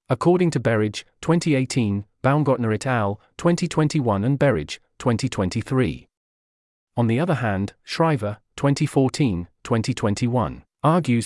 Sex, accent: male, British